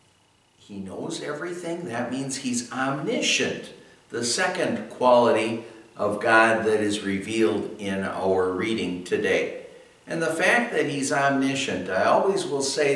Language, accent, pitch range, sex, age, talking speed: English, American, 110-145 Hz, male, 60-79, 135 wpm